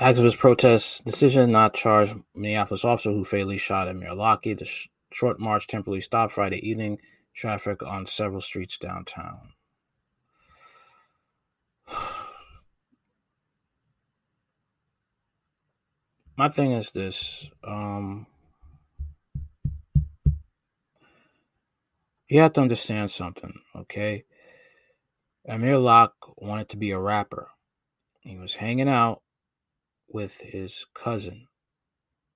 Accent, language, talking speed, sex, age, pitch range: American, English, 95 wpm, male, 20-39, 100-120 Hz